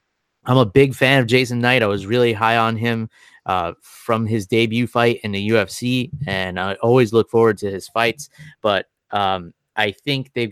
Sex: male